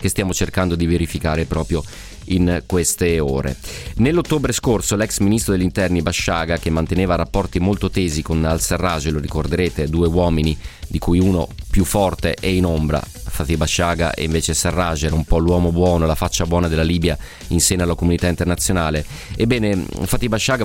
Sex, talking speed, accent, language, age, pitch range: male, 170 wpm, native, Italian, 30-49, 80-95 Hz